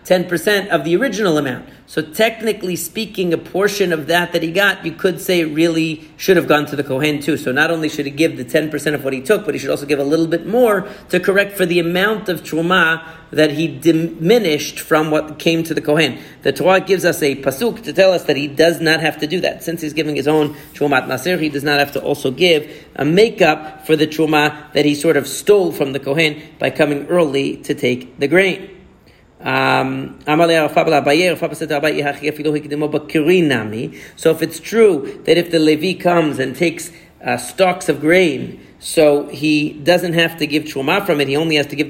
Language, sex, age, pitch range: English, male, 40-59, 150-185 Hz